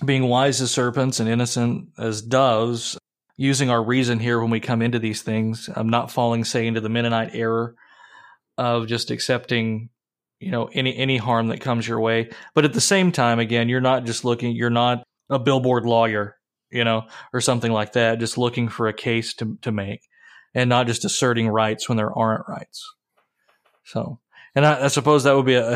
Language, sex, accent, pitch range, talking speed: English, male, American, 115-135 Hz, 195 wpm